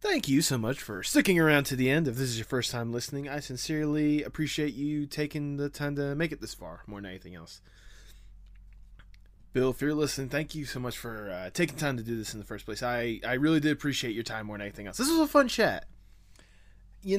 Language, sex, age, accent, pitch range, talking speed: English, male, 20-39, American, 95-150 Hz, 235 wpm